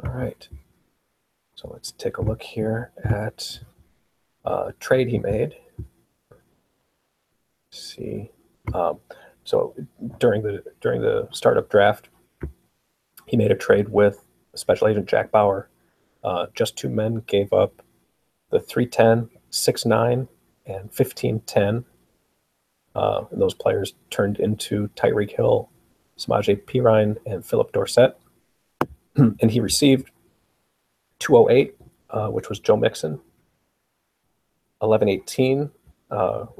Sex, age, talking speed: male, 40-59, 110 wpm